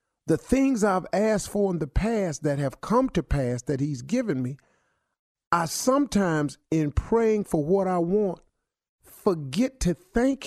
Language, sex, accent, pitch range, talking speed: English, male, American, 130-195 Hz, 160 wpm